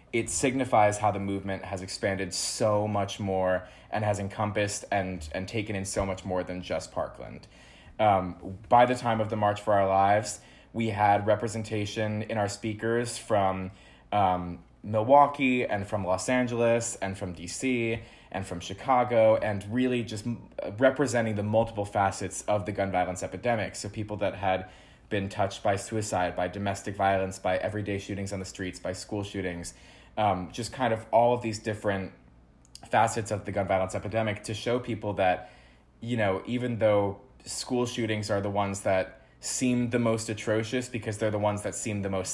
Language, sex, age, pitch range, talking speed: English, male, 20-39, 95-110 Hz, 175 wpm